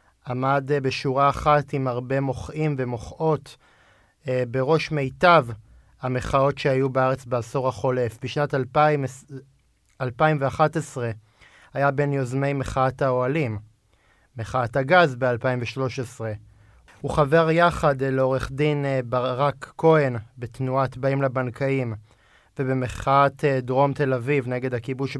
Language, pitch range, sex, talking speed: Hebrew, 120-145 Hz, male, 110 wpm